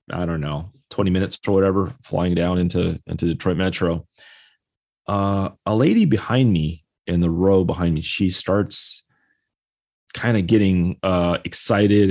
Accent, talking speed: American, 150 wpm